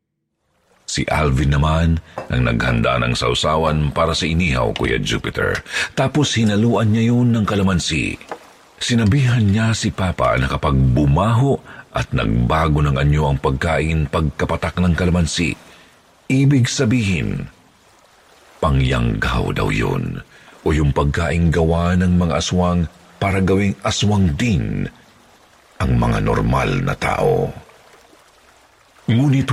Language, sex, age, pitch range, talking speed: Filipino, male, 50-69, 80-105 Hz, 115 wpm